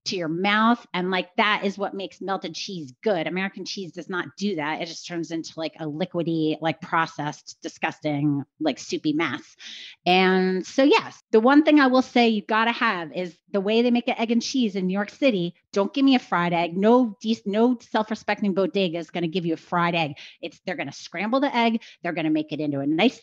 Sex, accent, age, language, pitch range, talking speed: female, American, 30-49, English, 175-250 Hz, 235 wpm